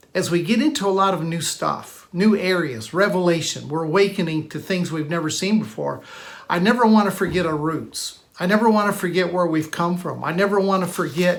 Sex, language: male, English